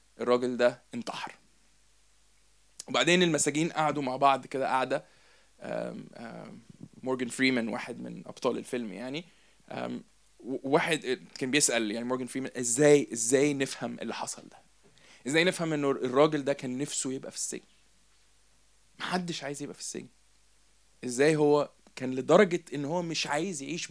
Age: 20-39